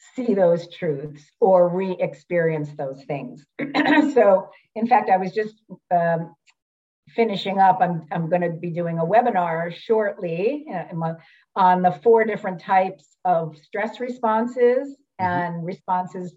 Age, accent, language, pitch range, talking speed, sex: 50-69, American, English, 170-220 Hz, 130 wpm, female